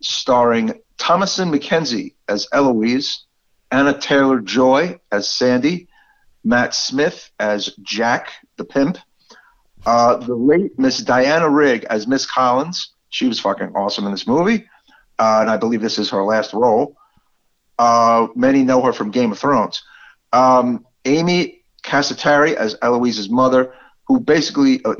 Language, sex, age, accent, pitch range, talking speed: English, male, 50-69, American, 110-145 Hz, 135 wpm